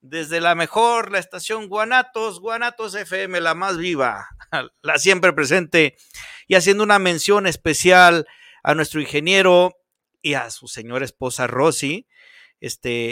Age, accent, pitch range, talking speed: 50-69, Mexican, 150-205 Hz, 135 wpm